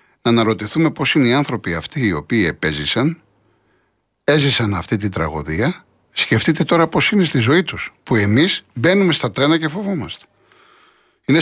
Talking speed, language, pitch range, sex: 150 wpm, Greek, 110-140 Hz, male